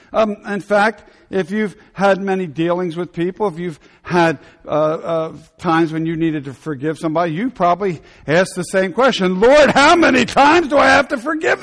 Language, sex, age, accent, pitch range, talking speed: English, male, 60-79, American, 170-240 Hz, 190 wpm